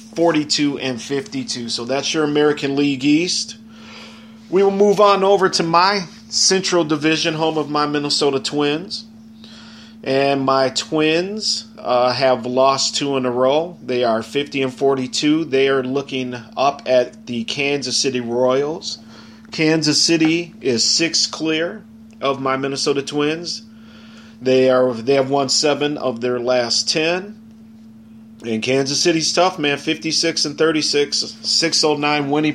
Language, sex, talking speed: English, male, 140 wpm